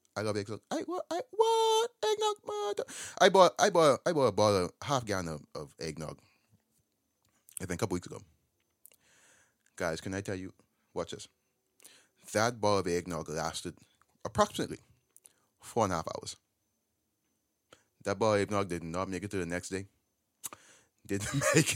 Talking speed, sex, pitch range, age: 170 wpm, male, 100-150 Hz, 30-49